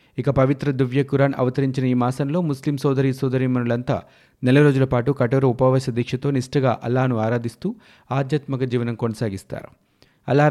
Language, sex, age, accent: Telugu, male, 30-49, native